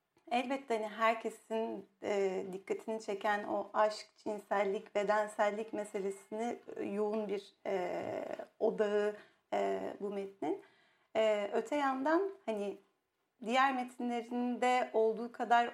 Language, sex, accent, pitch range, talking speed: Turkish, female, native, 215-255 Hz, 100 wpm